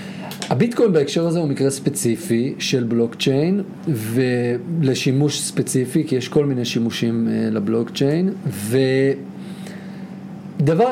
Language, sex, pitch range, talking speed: Hebrew, male, 120-190 Hz, 100 wpm